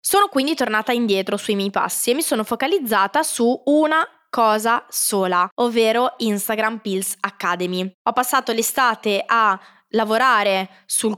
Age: 20-39